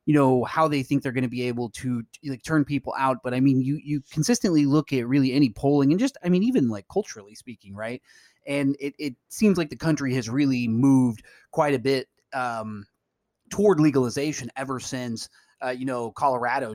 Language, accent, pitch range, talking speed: English, American, 120-140 Hz, 205 wpm